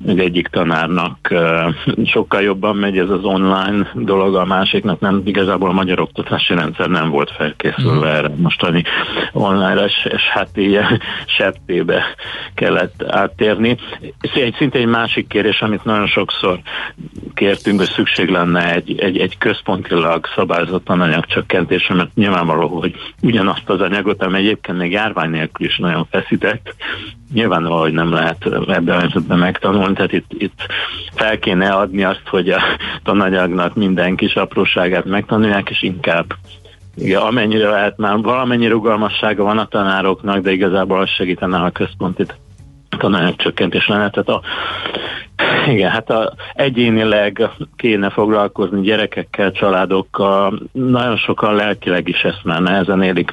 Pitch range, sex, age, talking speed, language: 90-105 Hz, male, 60-79, 135 wpm, Hungarian